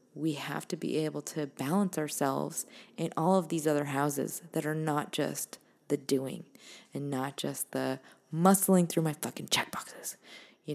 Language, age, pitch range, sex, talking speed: English, 20-39, 145-175 Hz, female, 165 wpm